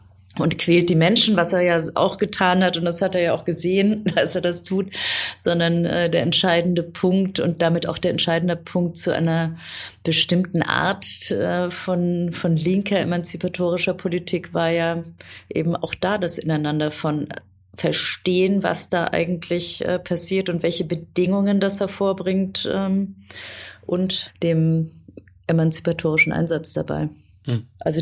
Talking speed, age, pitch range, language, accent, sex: 145 wpm, 30-49, 165-185 Hz, German, German, female